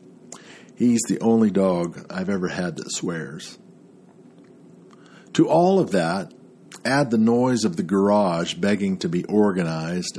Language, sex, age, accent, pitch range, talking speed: English, male, 50-69, American, 95-155 Hz, 135 wpm